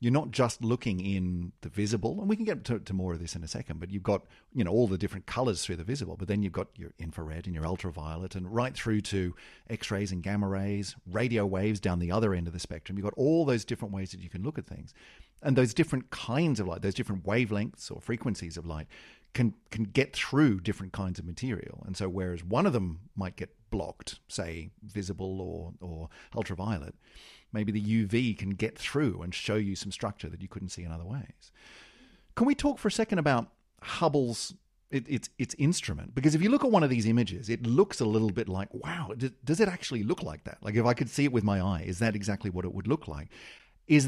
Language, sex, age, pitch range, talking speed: English, male, 40-59, 95-130 Hz, 235 wpm